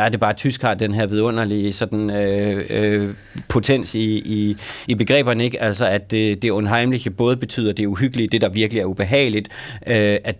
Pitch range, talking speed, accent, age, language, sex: 105-130 Hz, 195 wpm, native, 30-49, Danish, male